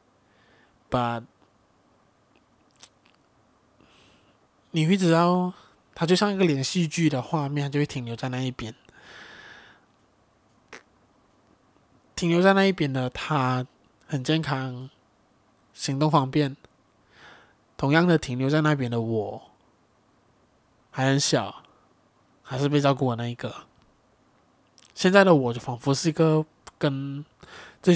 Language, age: Chinese, 20-39